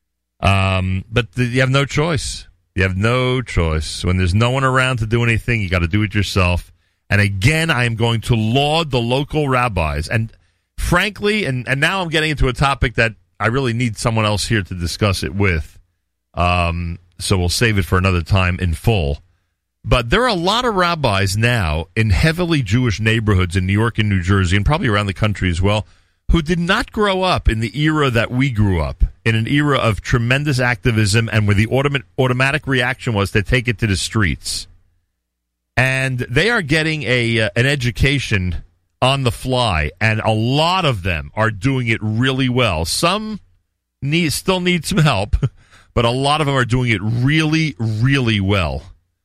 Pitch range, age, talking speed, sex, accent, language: 95-135 Hz, 40-59, 195 wpm, male, American, English